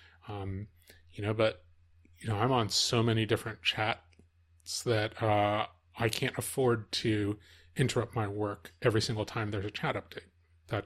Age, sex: 30-49, male